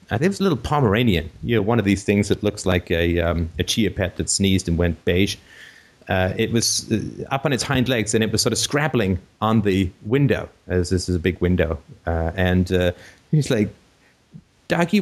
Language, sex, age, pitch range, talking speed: English, male, 30-49, 95-120 Hz, 220 wpm